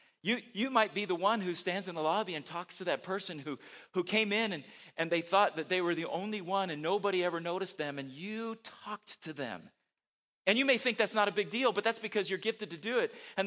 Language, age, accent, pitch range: English, 40-59, American, 170-225 Hz